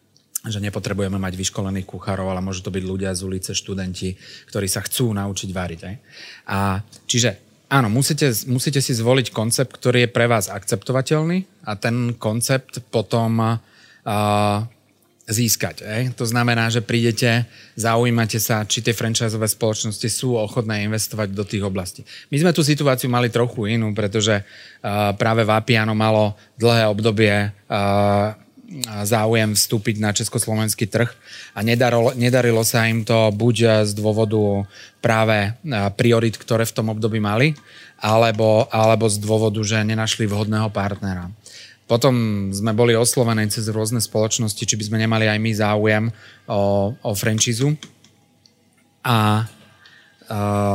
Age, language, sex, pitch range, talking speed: 30-49, Slovak, male, 105-120 Hz, 140 wpm